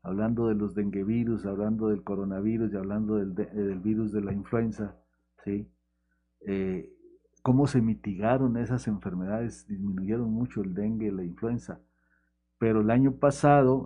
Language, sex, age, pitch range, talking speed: Spanish, male, 50-69, 95-115 Hz, 145 wpm